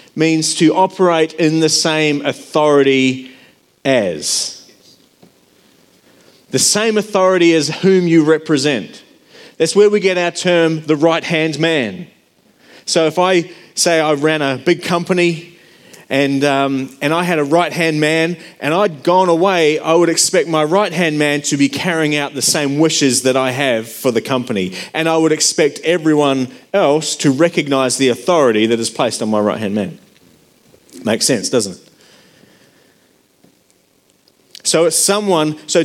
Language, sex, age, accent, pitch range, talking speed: English, male, 30-49, Australian, 145-180 Hz, 150 wpm